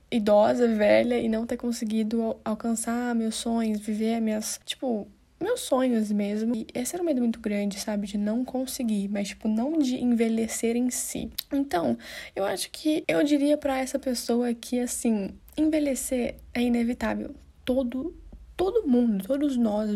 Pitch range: 220-265 Hz